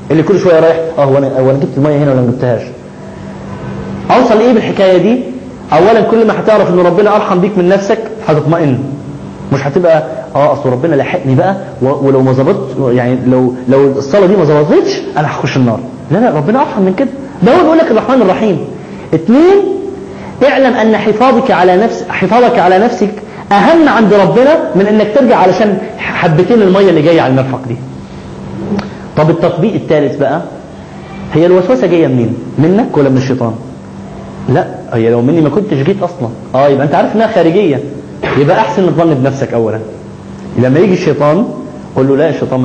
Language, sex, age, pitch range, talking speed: English, male, 30-49, 135-210 Hz, 165 wpm